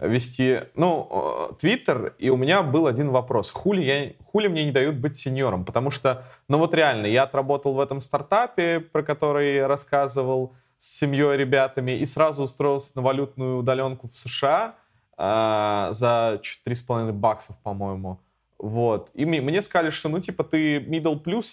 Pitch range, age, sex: 120-155 Hz, 20-39, male